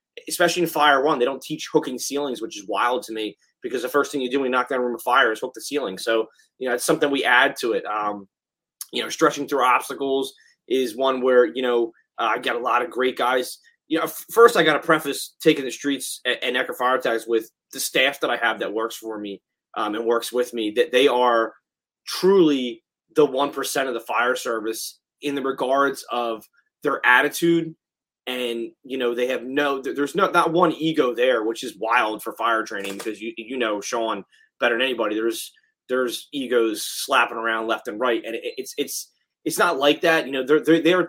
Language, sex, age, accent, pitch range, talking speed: English, male, 20-39, American, 125-165 Hz, 220 wpm